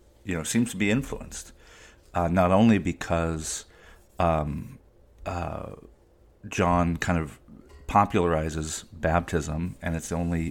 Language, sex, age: English, male, 40-59